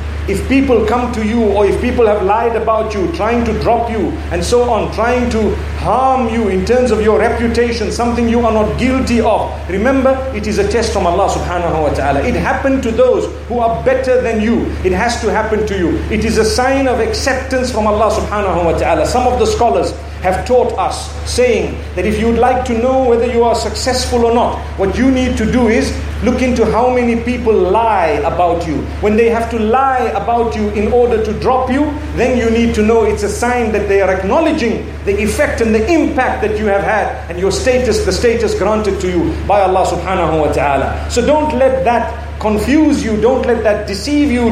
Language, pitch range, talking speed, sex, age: English, 210-255 Hz, 215 wpm, male, 50-69